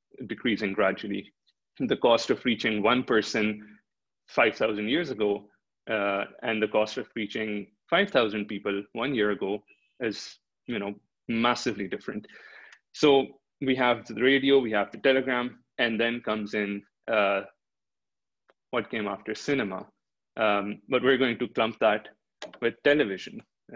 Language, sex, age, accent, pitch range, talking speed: English, male, 20-39, Indian, 105-130 Hz, 135 wpm